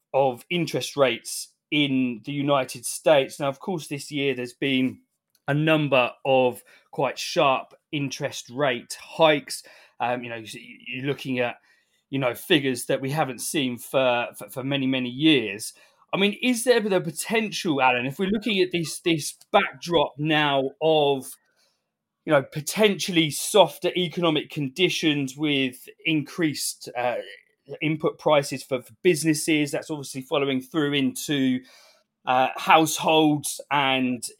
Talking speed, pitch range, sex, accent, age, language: 135 wpm, 135-170 Hz, male, British, 20-39, English